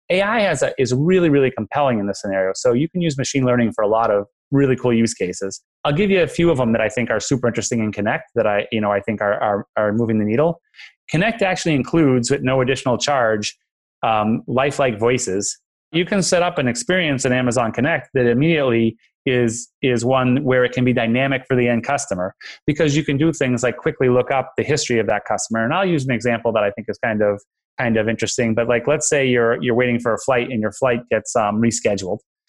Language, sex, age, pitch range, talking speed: English, male, 30-49, 115-140 Hz, 235 wpm